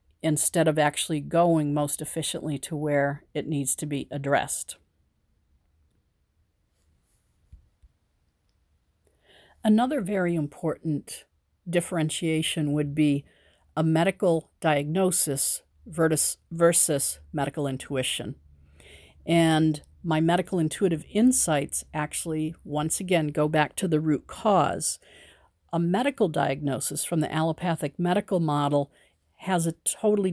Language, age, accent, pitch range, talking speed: English, 50-69, American, 145-170 Hz, 100 wpm